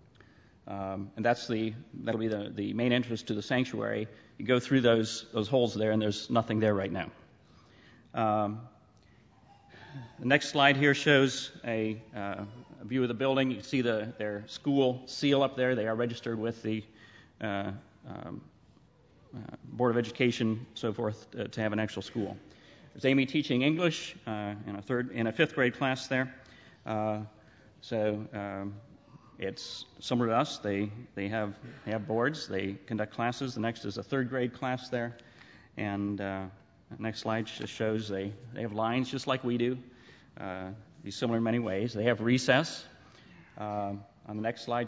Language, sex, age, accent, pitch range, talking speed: English, male, 30-49, American, 105-125 Hz, 180 wpm